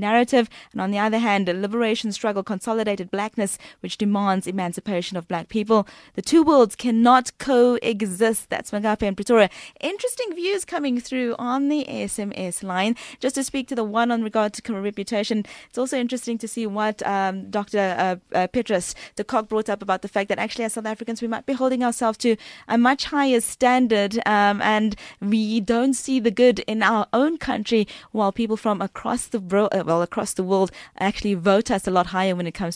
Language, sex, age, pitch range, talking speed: English, female, 20-39, 200-240 Hz, 200 wpm